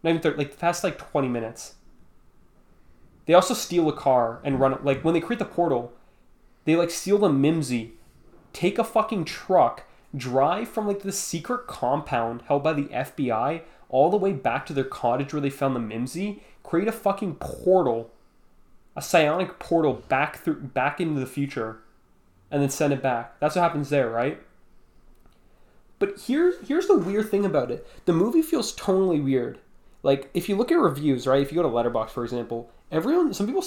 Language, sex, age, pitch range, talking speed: English, male, 20-39, 125-180 Hz, 190 wpm